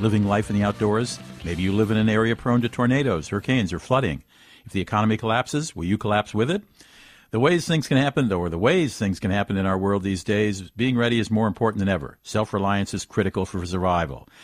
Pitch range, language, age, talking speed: 95-115 Hz, English, 50-69, 230 wpm